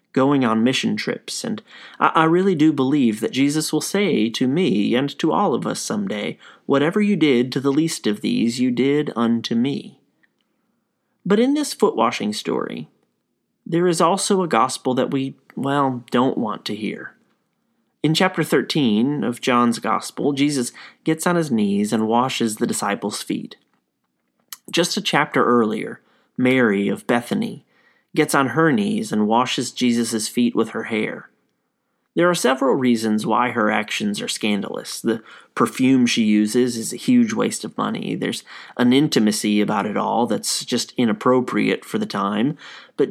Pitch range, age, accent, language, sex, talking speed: 120-195 Hz, 30-49, American, English, male, 160 wpm